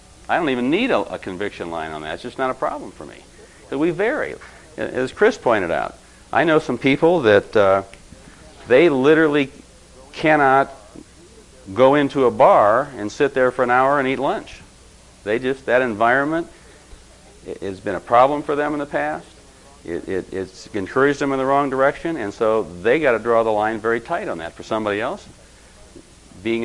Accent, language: American, English